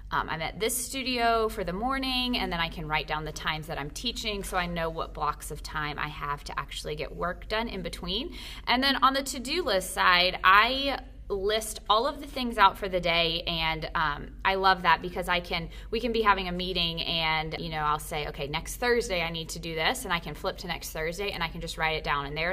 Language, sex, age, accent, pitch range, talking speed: English, female, 20-39, American, 165-205 Hz, 255 wpm